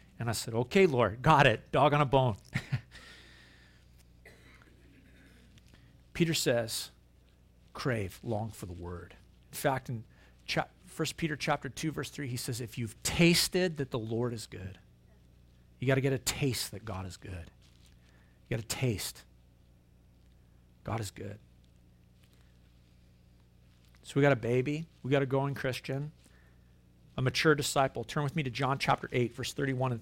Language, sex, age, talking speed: English, male, 50-69, 150 wpm